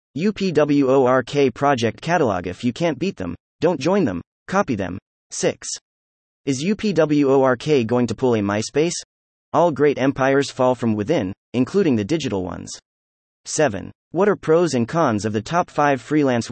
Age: 30-49